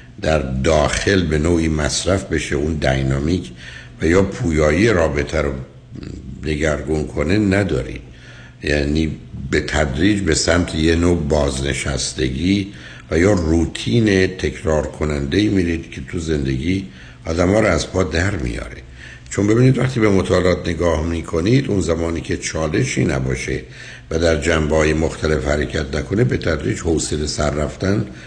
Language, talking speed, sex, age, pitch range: Persian, 130 wpm, male, 60-79, 70-95 Hz